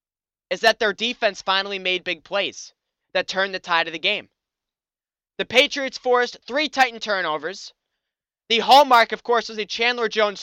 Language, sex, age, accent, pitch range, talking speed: English, male, 20-39, American, 195-240 Hz, 165 wpm